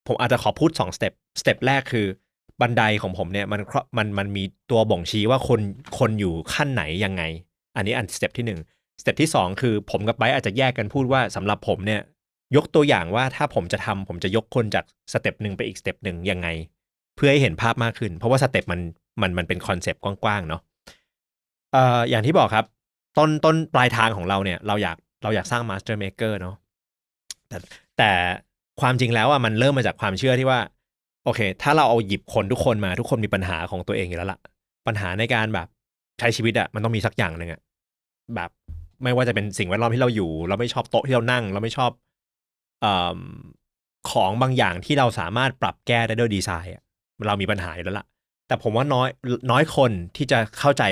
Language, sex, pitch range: Thai, male, 95-125 Hz